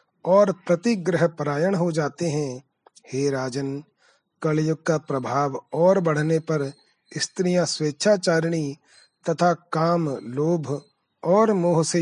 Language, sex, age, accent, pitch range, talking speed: Hindi, male, 30-49, native, 145-175 Hz, 110 wpm